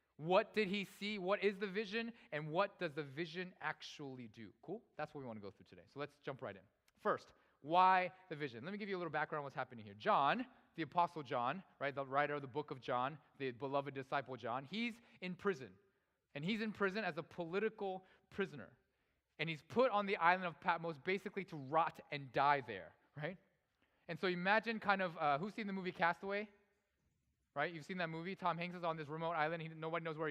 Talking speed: 225 wpm